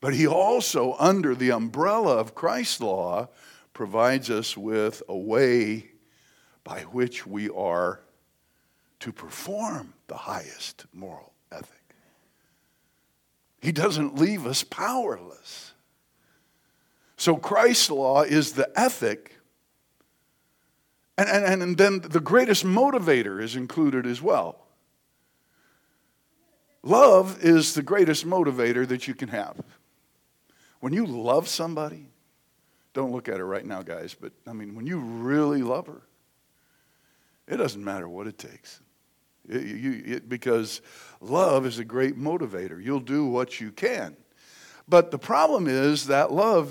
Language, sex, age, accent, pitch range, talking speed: English, male, 60-79, American, 120-165 Hz, 125 wpm